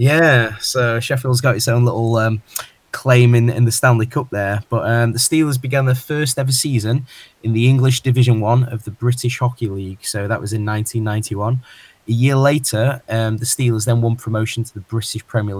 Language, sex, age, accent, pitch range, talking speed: English, male, 20-39, British, 110-125 Hz, 200 wpm